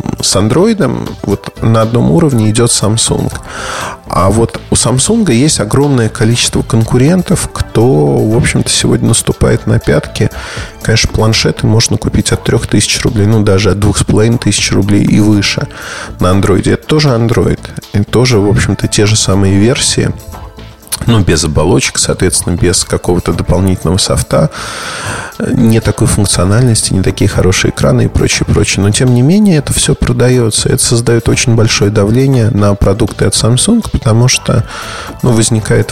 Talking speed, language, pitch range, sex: 150 wpm, Russian, 100-125 Hz, male